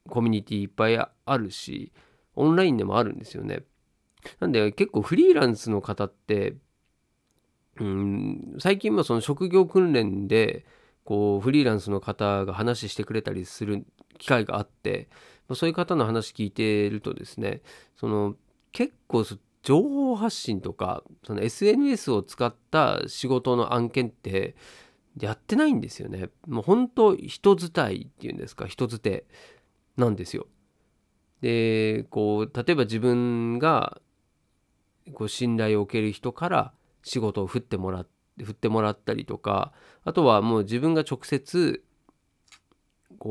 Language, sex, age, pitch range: Japanese, male, 40-59, 105-160 Hz